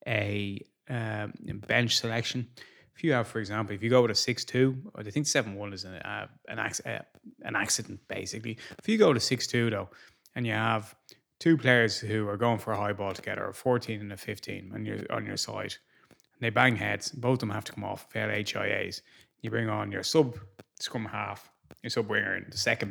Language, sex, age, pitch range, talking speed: English, male, 20-39, 105-135 Hz, 215 wpm